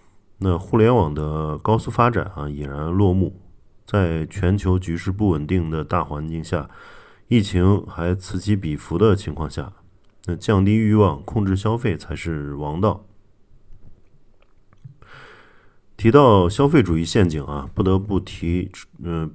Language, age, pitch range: Chinese, 30-49, 85-105 Hz